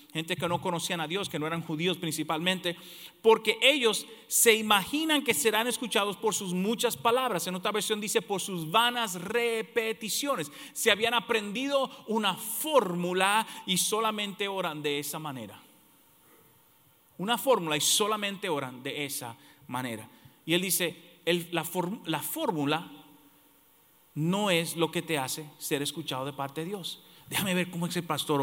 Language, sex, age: English, male, 40-59